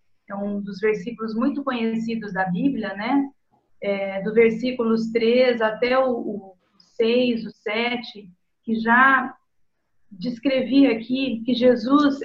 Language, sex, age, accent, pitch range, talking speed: Portuguese, female, 40-59, Brazilian, 220-265 Hz, 120 wpm